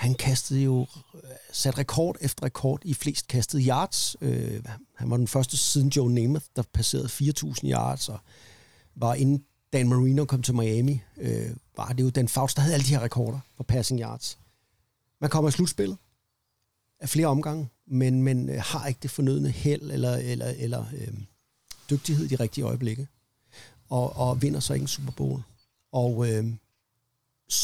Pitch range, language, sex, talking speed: 115-140 Hz, Danish, male, 170 wpm